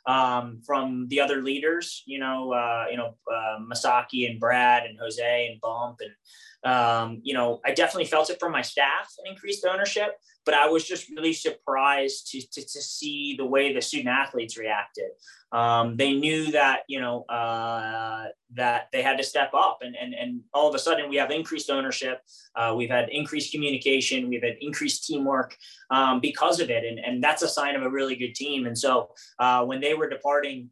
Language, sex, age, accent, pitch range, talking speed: English, male, 20-39, American, 120-150 Hz, 200 wpm